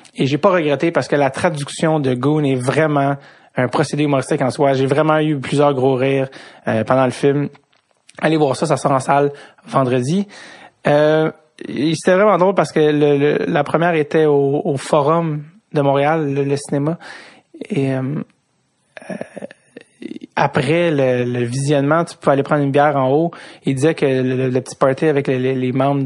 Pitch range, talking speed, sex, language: 135-160 Hz, 190 wpm, male, English